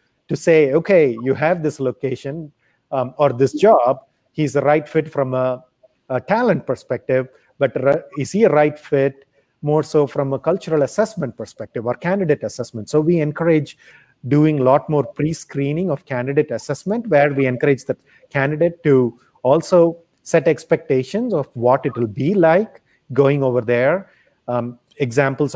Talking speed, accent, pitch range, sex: 160 wpm, Indian, 125-150 Hz, male